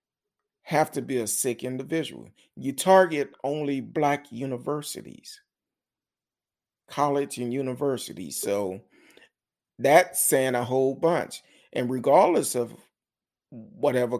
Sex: male